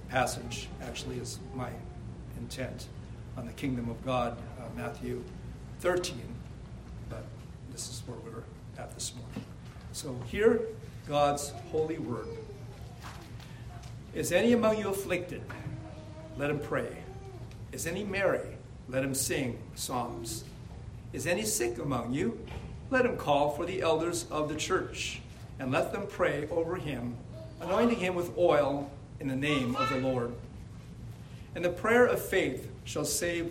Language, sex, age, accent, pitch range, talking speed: English, male, 50-69, American, 120-160 Hz, 140 wpm